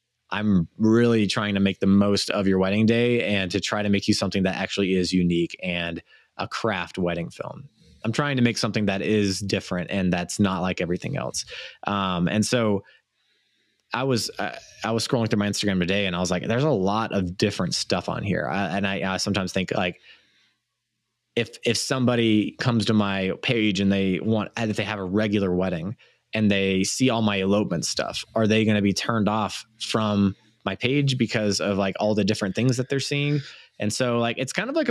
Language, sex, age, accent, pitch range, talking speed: English, male, 20-39, American, 100-120 Hz, 210 wpm